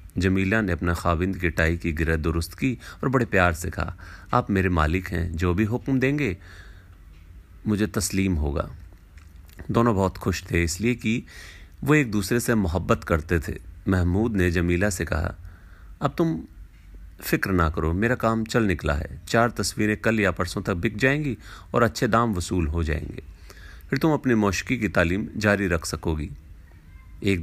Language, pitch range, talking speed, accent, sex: Hindi, 85-110 Hz, 170 wpm, native, male